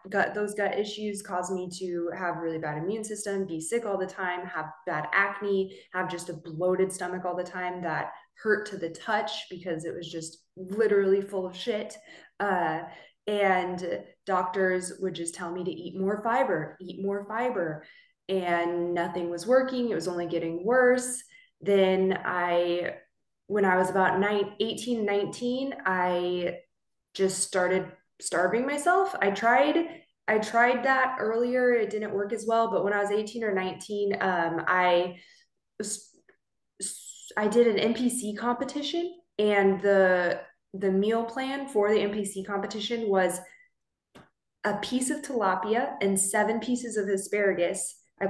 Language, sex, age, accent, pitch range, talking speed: English, female, 20-39, American, 185-230 Hz, 155 wpm